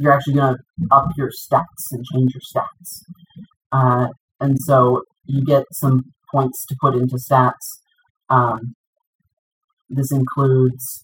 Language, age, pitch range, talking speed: English, 40-59, 125-150 Hz, 135 wpm